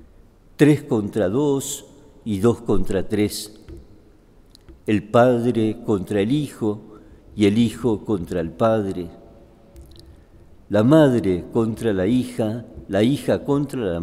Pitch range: 95-120 Hz